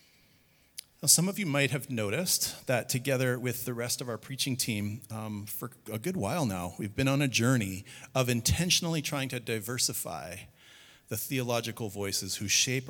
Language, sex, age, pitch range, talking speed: English, male, 40-59, 105-130 Hz, 170 wpm